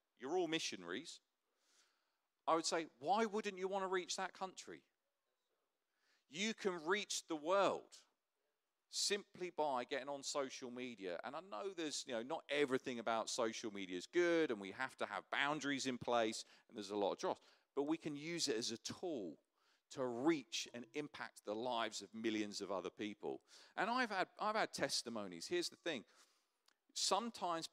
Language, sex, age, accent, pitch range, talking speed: English, male, 40-59, British, 120-190 Hz, 175 wpm